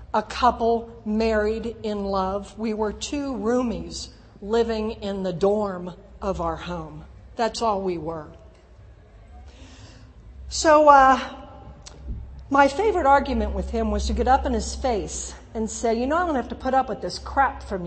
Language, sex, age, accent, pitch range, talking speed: English, female, 50-69, American, 205-275 Hz, 160 wpm